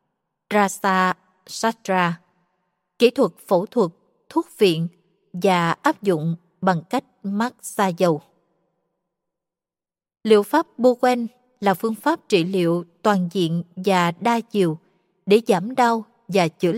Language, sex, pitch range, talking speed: Vietnamese, female, 180-225 Hz, 120 wpm